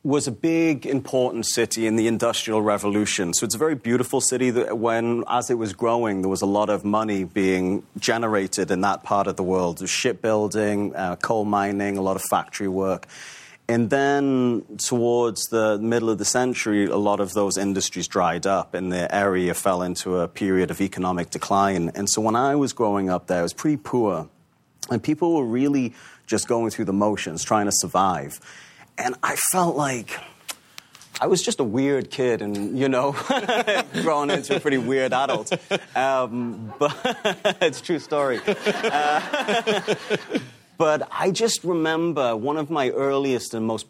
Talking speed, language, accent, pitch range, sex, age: 180 wpm, English, British, 100-130 Hz, male, 30-49